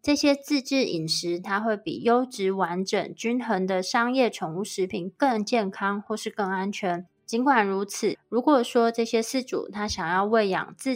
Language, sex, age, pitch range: Chinese, female, 20-39, 185-235 Hz